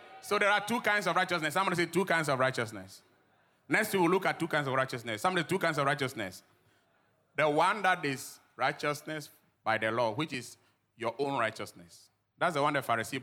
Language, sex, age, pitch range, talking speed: English, male, 30-49, 115-185 Hz, 205 wpm